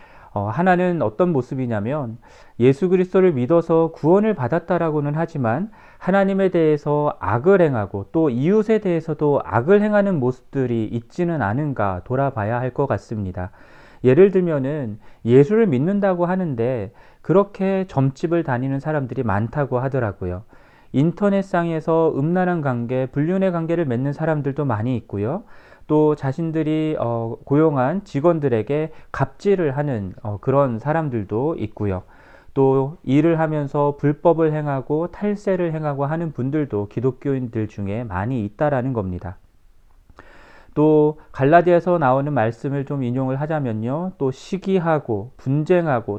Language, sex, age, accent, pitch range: Korean, male, 40-59, native, 125-170 Hz